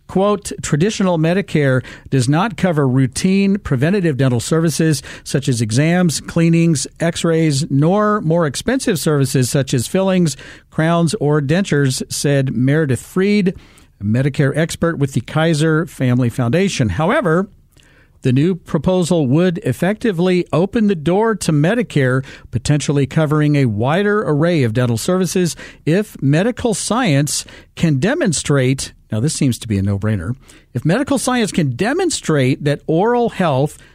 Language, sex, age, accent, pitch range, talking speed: English, male, 50-69, American, 135-185 Hz, 135 wpm